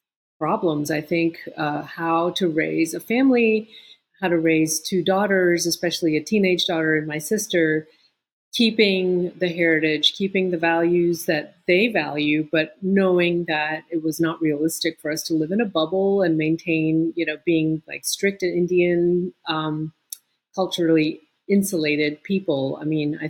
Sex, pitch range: female, 155-185 Hz